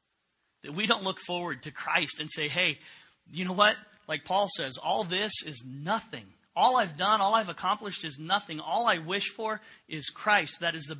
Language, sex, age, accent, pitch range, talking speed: English, male, 40-59, American, 145-205 Hz, 195 wpm